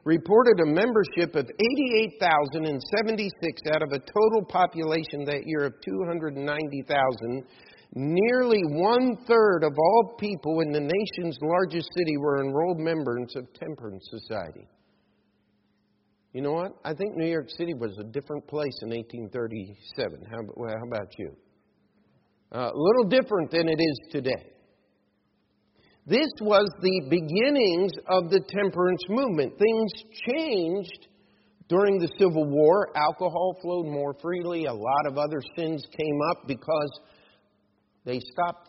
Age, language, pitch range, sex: 50-69, English, 120-180 Hz, male